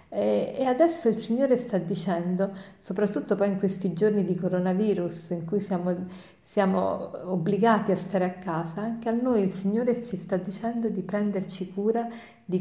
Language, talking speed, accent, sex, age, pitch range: Italian, 160 wpm, native, female, 50-69, 185-215 Hz